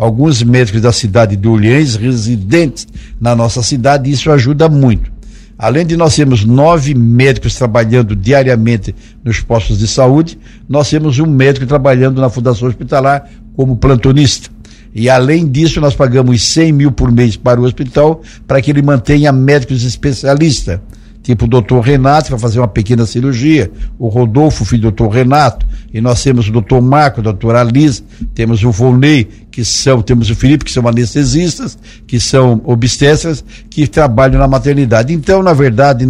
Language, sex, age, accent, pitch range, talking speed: Portuguese, male, 60-79, Brazilian, 115-145 Hz, 165 wpm